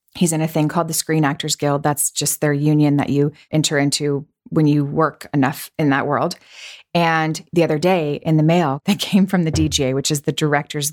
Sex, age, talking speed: female, 30-49, 220 wpm